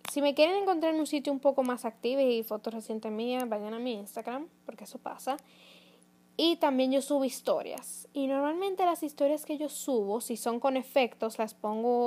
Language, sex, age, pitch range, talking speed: Spanish, female, 10-29, 215-275 Hz, 200 wpm